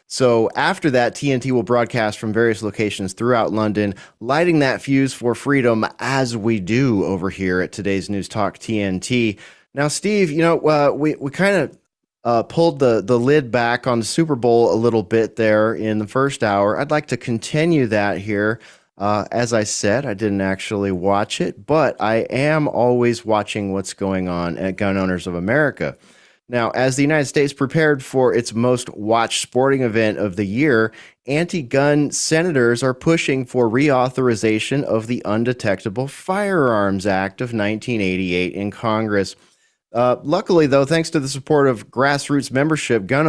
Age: 30-49